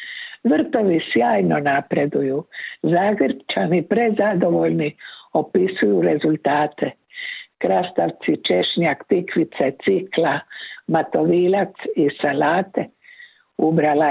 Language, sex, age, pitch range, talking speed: Croatian, female, 60-79, 150-245 Hz, 65 wpm